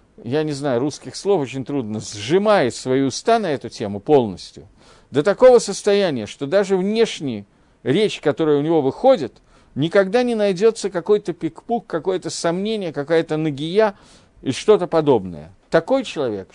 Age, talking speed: 50-69, 140 wpm